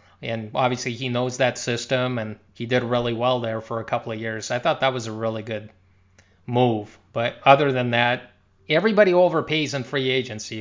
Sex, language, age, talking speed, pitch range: male, English, 20-39, 190 wpm, 110-135 Hz